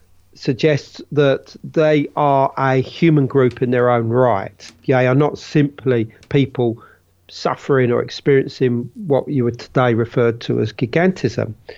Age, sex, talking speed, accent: 40-59, male, 140 wpm, British